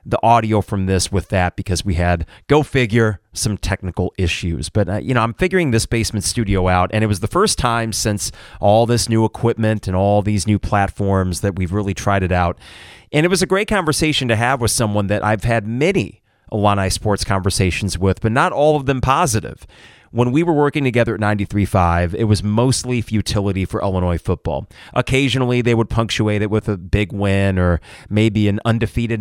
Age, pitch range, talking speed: 30-49, 100-120 Hz, 200 wpm